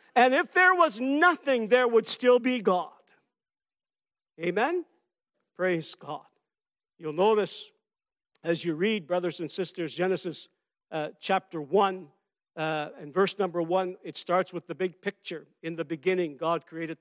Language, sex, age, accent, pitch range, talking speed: English, male, 60-79, American, 180-250 Hz, 140 wpm